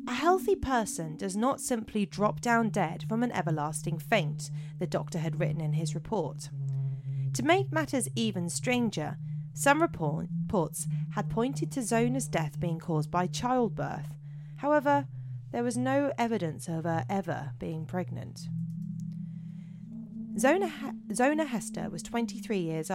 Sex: female